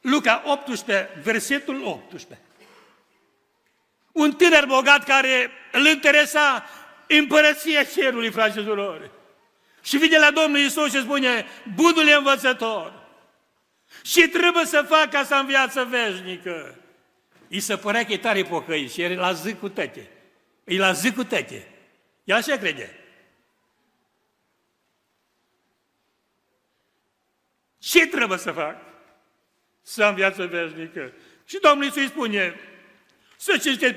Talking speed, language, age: 115 wpm, Romanian, 60-79